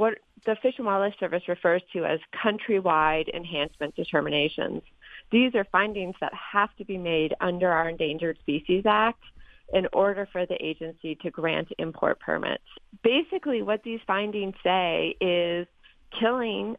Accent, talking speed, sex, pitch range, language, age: American, 145 wpm, female, 175-215 Hz, English, 30-49